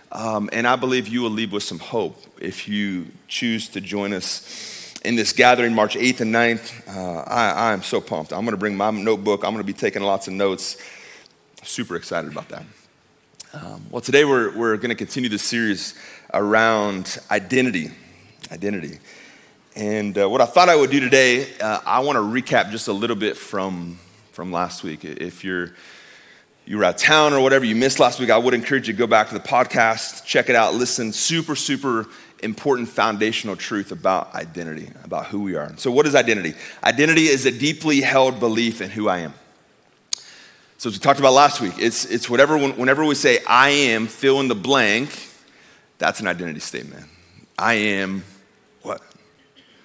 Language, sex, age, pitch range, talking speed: English, male, 30-49, 100-125 Hz, 195 wpm